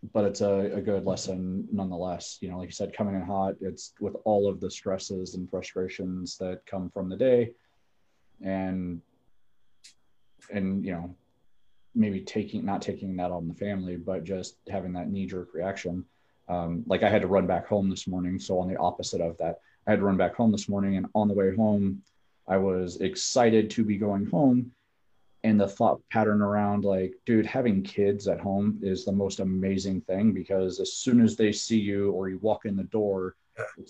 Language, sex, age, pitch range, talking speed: English, male, 30-49, 95-105 Hz, 200 wpm